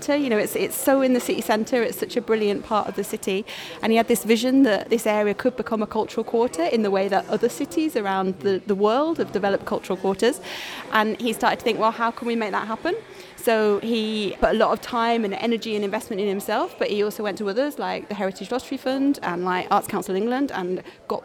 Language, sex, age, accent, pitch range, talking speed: English, female, 30-49, British, 195-230 Hz, 245 wpm